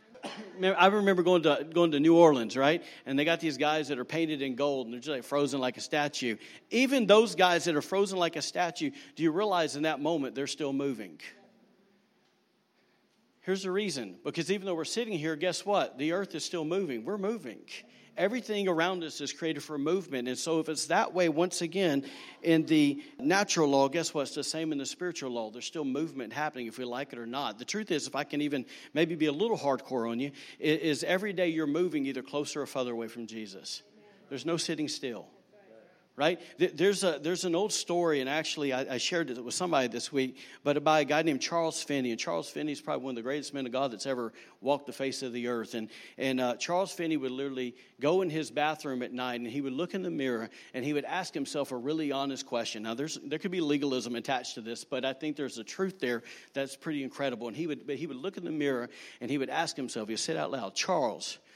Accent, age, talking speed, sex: American, 50-69, 235 wpm, male